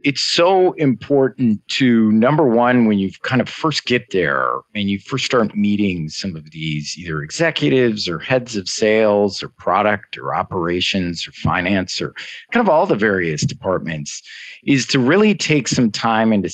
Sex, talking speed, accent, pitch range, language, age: male, 175 wpm, American, 100-130 Hz, English, 40-59